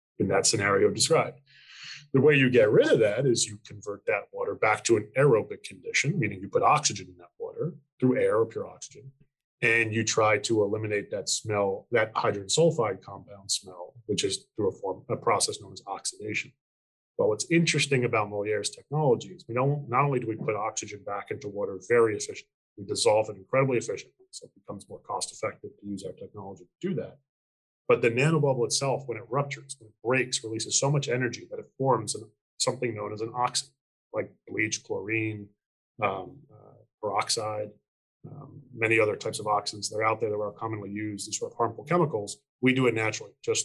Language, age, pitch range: English, 30-49, 105-150 Hz